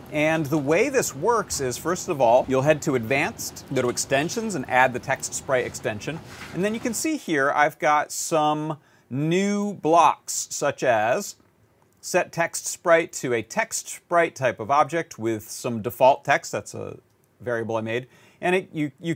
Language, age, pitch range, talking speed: English, 40-59, 120-165 Hz, 180 wpm